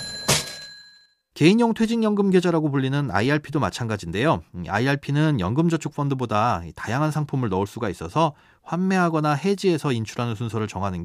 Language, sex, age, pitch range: Korean, male, 30-49, 110-165 Hz